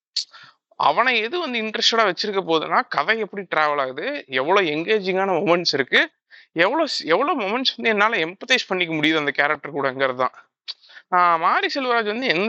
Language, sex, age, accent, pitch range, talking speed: Tamil, male, 20-39, native, 160-220 Hz, 150 wpm